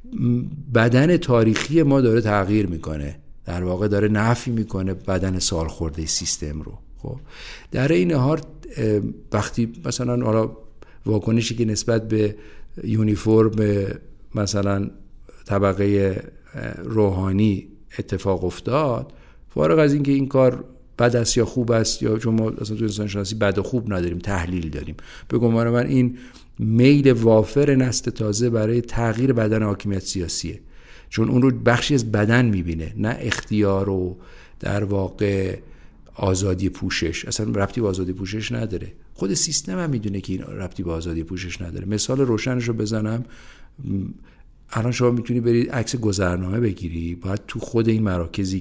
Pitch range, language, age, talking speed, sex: 95-120 Hz, Persian, 50-69, 140 wpm, male